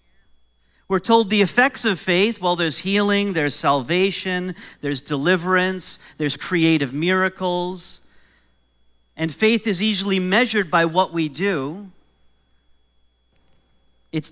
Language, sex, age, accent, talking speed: English, male, 40-59, American, 110 wpm